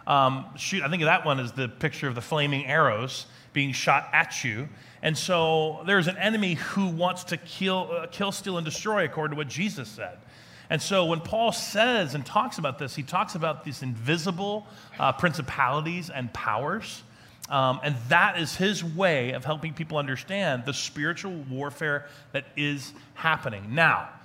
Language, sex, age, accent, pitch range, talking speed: English, male, 30-49, American, 130-175 Hz, 175 wpm